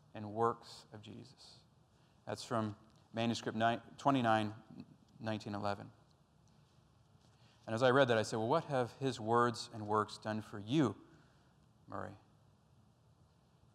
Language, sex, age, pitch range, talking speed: English, male, 40-59, 110-140 Hz, 120 wpm